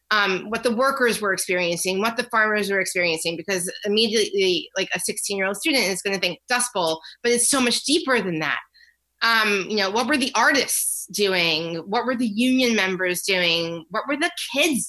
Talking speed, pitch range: 200 wpm, 195-245 Hz